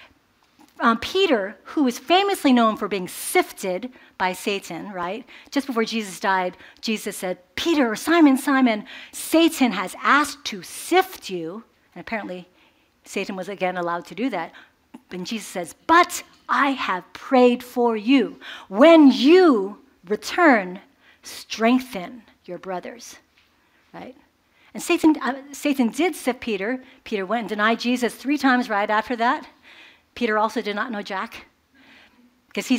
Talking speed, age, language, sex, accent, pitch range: 140 wpm, 50-69, English, female, American, 210-290 Hz